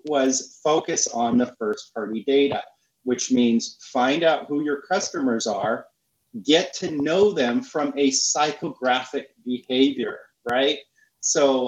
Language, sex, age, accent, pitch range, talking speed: English, male, 30-49, American, 130-160 Hz, 125 wpm